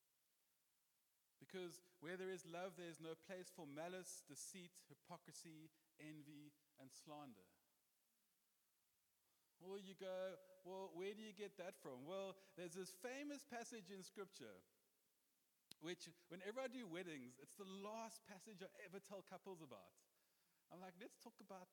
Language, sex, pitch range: English, male, 170-215 Hz